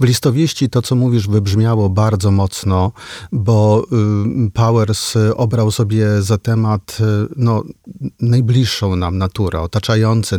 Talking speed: 110 wpm